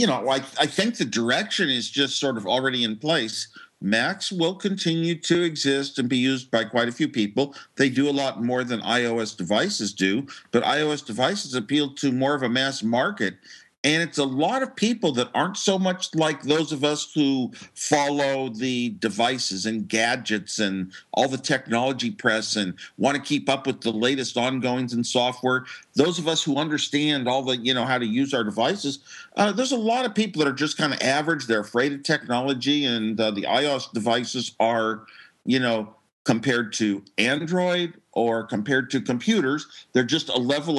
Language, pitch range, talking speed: Polish, 120-150 Hz, 195 wpm